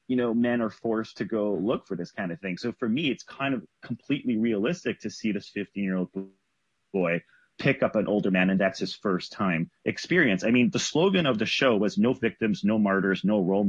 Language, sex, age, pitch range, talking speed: English, male, 30-49, 100-125 Hz, 225 wpm